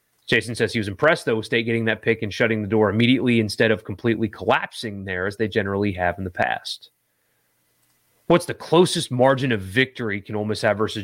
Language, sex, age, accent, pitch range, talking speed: English, male, 30-49, American, 110-150 Hz, 205 wpm